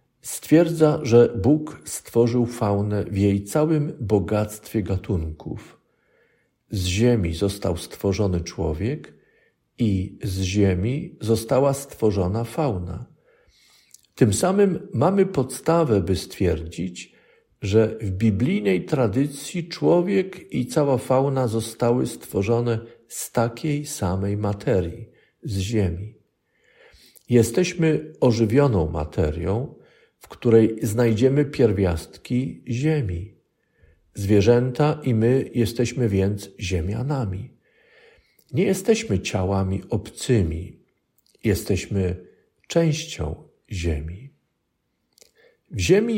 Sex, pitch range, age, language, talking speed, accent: male, 100-145 Hz, 50-69, Polish, 85 wpm, native